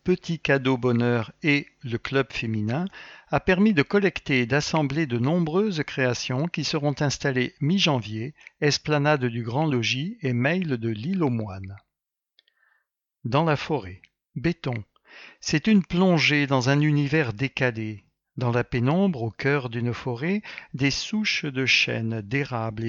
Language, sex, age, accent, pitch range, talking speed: English, male, 60-79, French, 120-160 Hz, 140 wpm